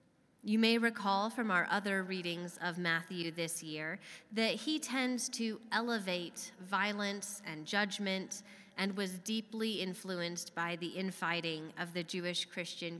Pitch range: 175-215 Hz